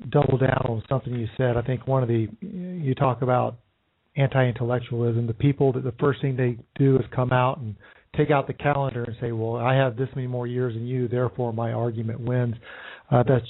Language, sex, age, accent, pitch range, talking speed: English, male, 50-69, American, 120-150 Hz, 220 wpm